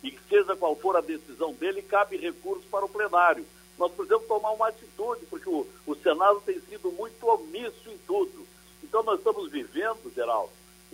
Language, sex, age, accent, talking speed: Portuguese, male, 60-79, Brazilian, 180 wpm